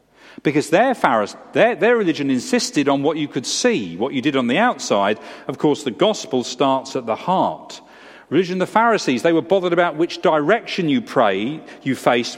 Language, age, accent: English, 40-59, British